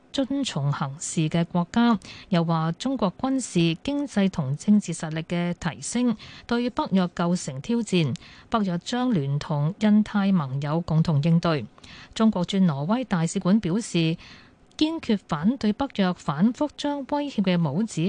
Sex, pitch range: female, 165-215 Hz